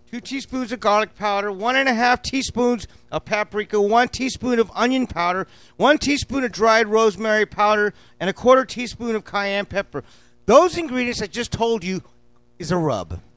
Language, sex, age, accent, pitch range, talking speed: English, male, 40-59, American, 155-235 Hz, 175 wpm